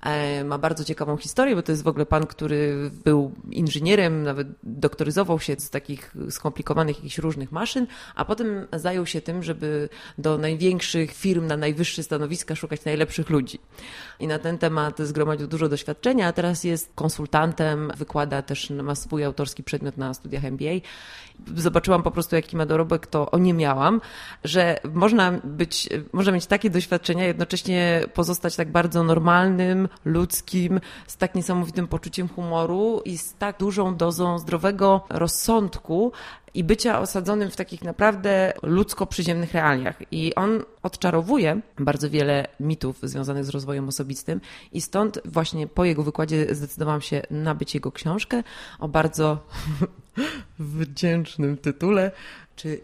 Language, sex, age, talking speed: Polish, female, 30-49, 140 wpm